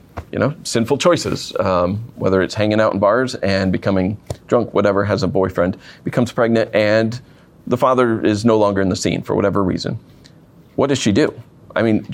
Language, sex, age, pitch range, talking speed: English, male, 30-49, 105-130 Hz, 190 wpm